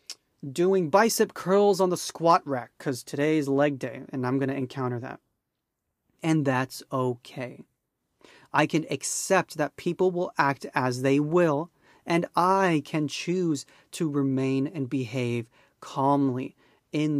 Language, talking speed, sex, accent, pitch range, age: English, 145 wpm, male, American, 135-175 Hz, 30-49